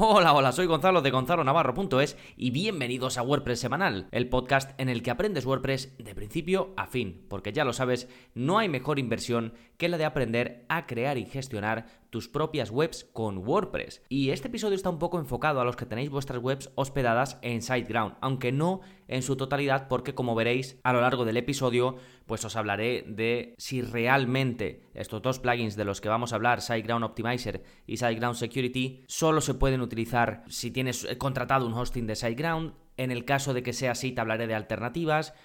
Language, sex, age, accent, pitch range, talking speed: Spanish, male, 20-39, Spanish, 120-155 Hz, 195 wpm